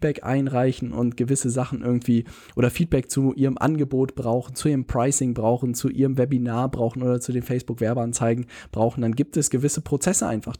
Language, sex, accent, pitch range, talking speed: German, male, German, 120-145 Hz, 180 wpm